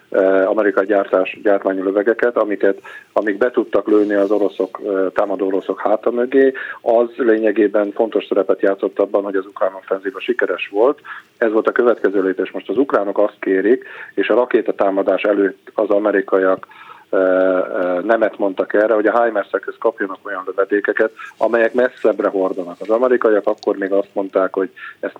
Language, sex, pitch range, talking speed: Hungarian, male, 95-115 Hz, 150 wpm